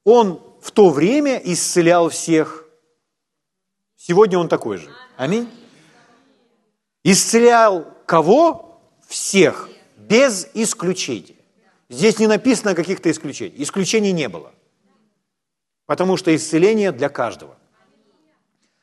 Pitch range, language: 150-210 Hz, Ukrainian